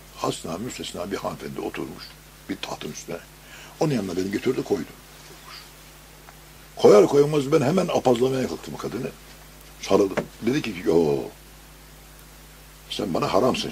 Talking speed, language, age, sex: 120 wpm, Turkish, 60-79, male